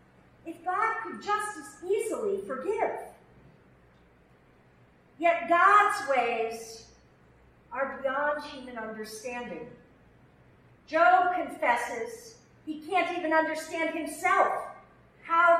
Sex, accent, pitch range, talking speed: female, American, 215-335 Hz, 85 wpm